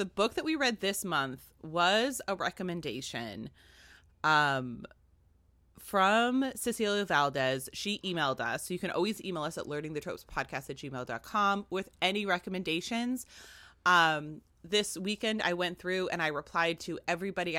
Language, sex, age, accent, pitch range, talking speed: English, female, 30-49, American, 140-190 Hz, 140 wpm